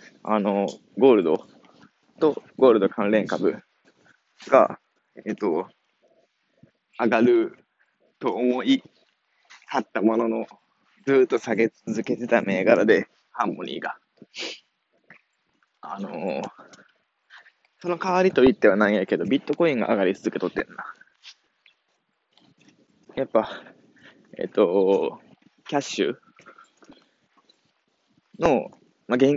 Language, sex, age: Japanese, male, 20-39